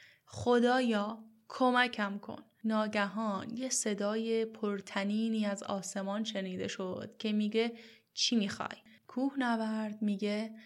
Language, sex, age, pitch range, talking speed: Persian, female, 10-29, 200-225 Hz, 100 wpm